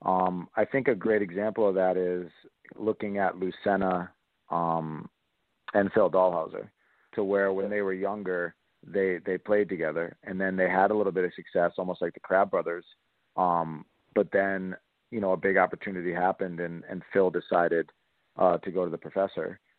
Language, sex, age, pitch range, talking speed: English, male, 40-59, 90-105 Hz, 180 wpm